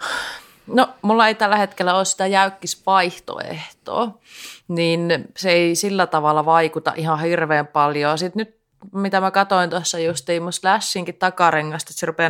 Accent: native